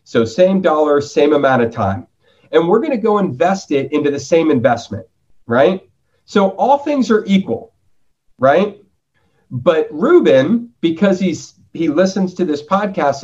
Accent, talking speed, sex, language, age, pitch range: American, 155 wpm, male, English, 40-59, 125-200 Hz